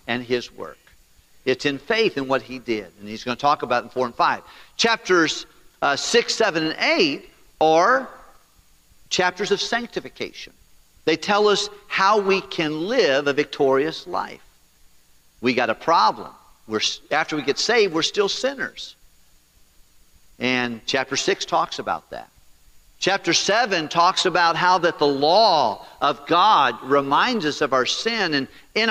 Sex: male